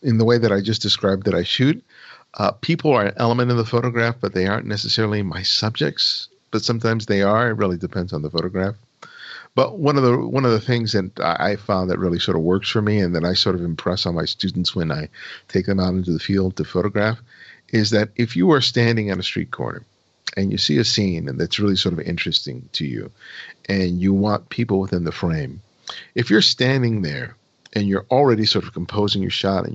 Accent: American